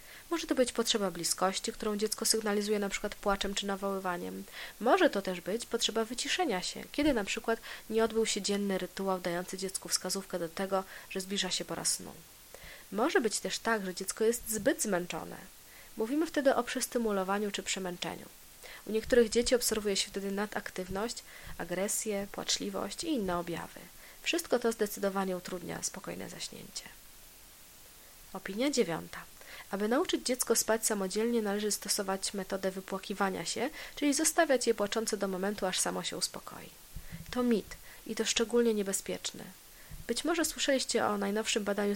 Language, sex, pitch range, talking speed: Polish, female, 195-235 Hz, 150 wpm